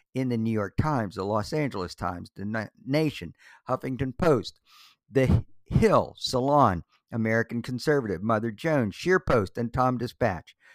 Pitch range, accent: 115-145 Hz, American